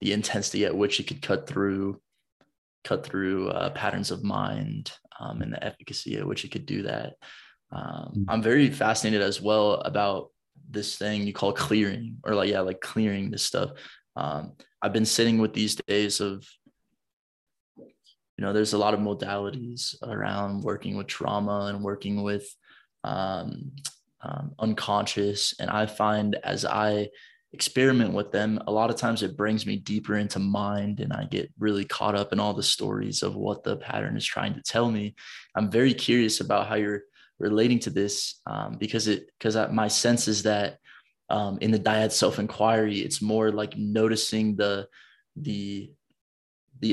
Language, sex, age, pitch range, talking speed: English, male, 20-39, 100-110 Hz, 175 wpm